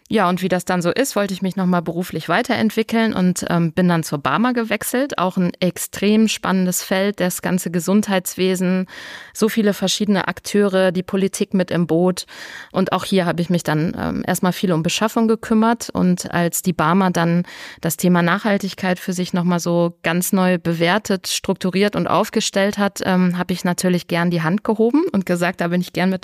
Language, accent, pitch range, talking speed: German, German, 175-200 Hz, 190 wpm